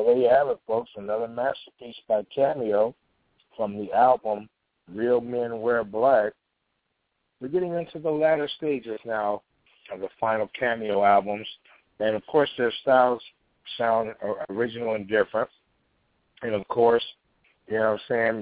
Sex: male